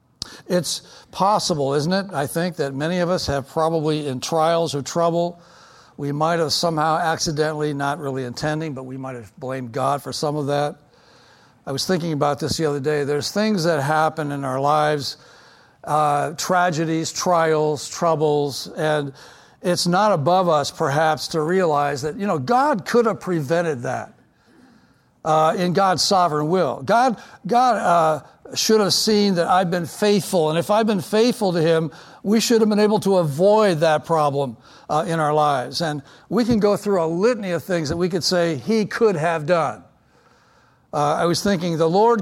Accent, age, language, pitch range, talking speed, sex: American, 60-79, English, 150-190 Hz, 180 wpm, male